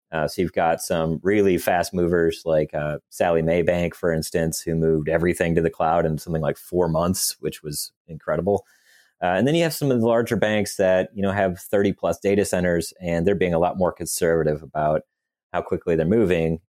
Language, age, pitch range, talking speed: English, 30-49, 80-100 Hz, 210 wpm